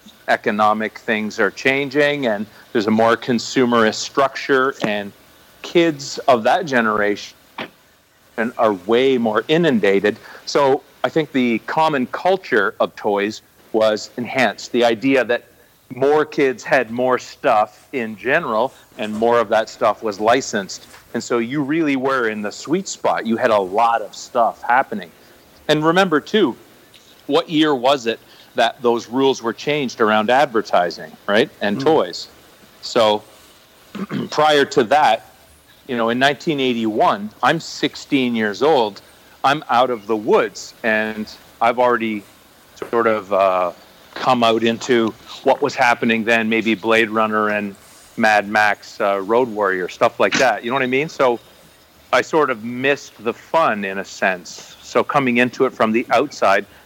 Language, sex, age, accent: English, male, 40-59, American